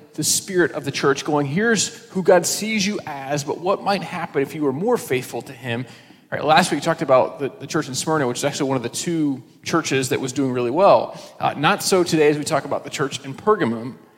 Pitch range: 135-170 Hz